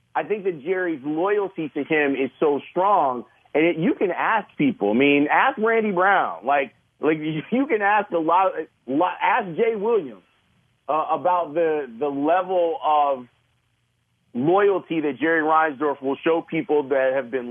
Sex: male